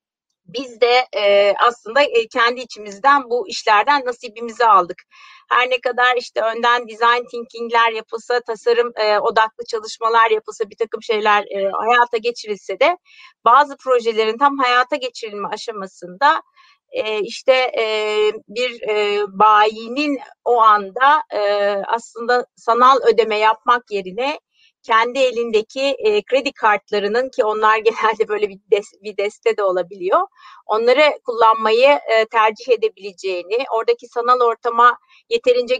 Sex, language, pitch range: female, Turkish, 215-290 Hz